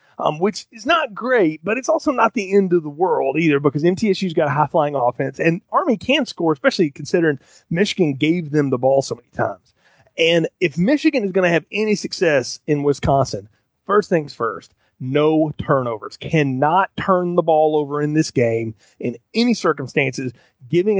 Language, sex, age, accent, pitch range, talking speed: English, male, 30-49, American, 145-195 Hz, 180 wpm